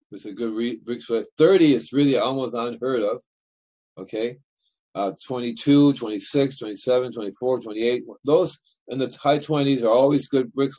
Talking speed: 150 wpm